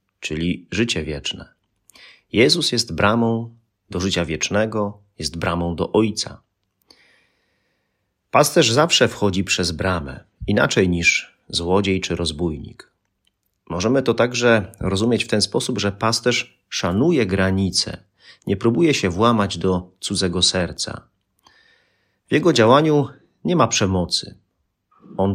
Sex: male